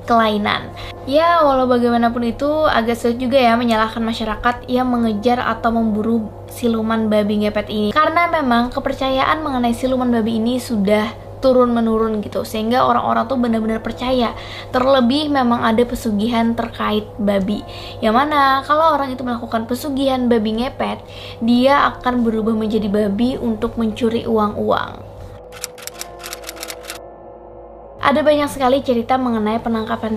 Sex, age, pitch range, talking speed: female, 20-39, 215-255 Hz, 125 wpm